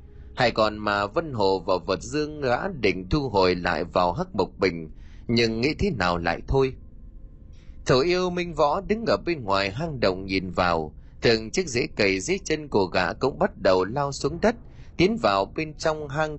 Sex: male